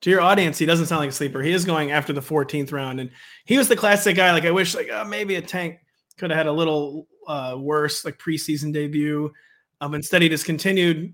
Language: English